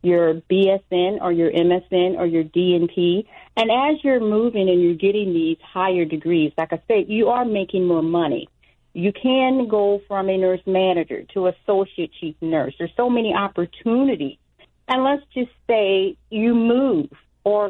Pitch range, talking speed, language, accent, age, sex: 175-230 Hz, 165 wpm, English, American, 40-59, female